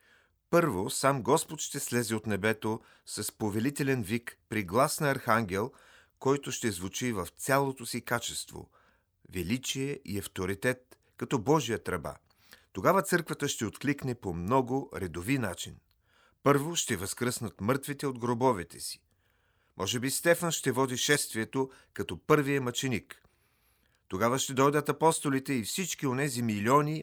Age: 40-59